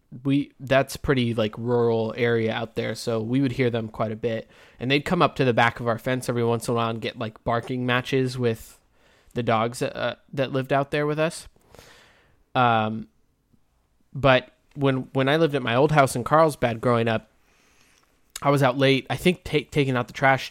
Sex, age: male, 20-39